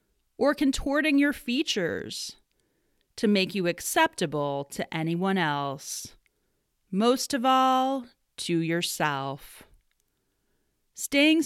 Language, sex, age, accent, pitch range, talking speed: English, female, 30-49, American, 155-250 Hz, 90 wpm